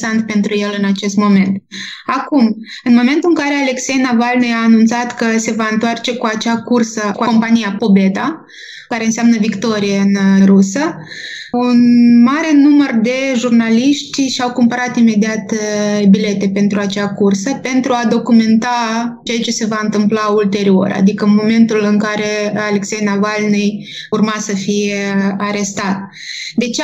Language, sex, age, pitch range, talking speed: Romanian, female, 20-39, 210-245 Hz, 140 wpm